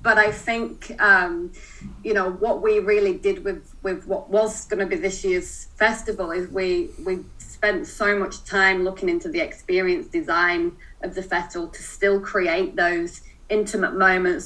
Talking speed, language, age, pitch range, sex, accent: 170 wpm, English, 30-49, 185-230 Hz, female, British